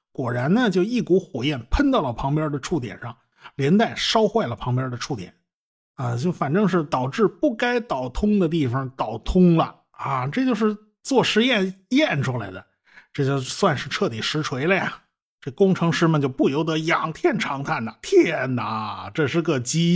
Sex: male